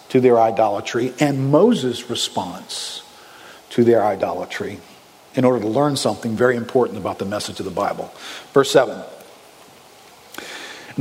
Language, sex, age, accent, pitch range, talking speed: English, male, 50-69, American, 125-160 Hz, 130 wpm